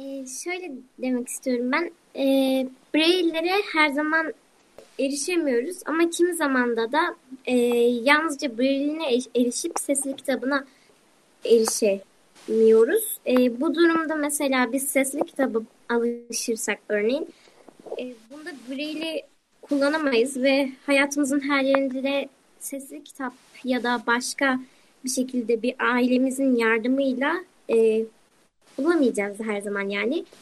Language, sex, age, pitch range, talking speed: Turkish, male, 20-39, 240-290 Hz, 110 wpm